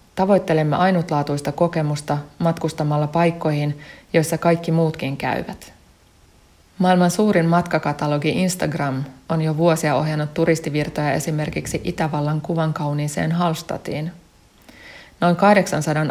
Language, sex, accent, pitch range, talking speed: Finnish, female, native, 150-170 Hz, 95 wpm